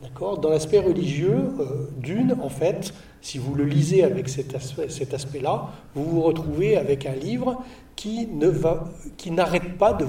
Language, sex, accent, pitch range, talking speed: French, male, French, 135-170 Hz, 180 wpm